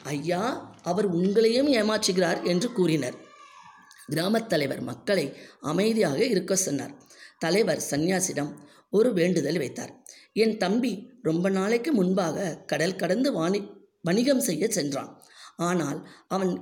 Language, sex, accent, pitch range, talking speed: Tamil, female, native, 160-220 Hz, 105 wpm